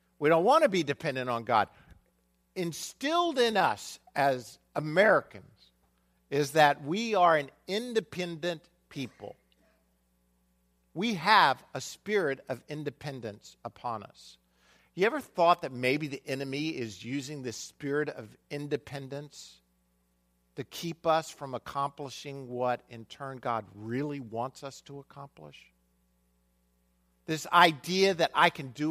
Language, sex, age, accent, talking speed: English, male, 50-69, American, 125 wpm